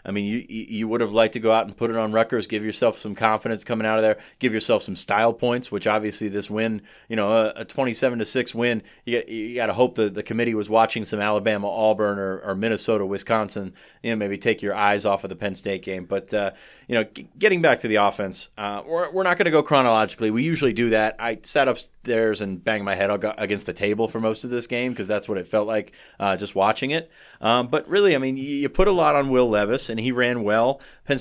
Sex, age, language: male, 30-49, English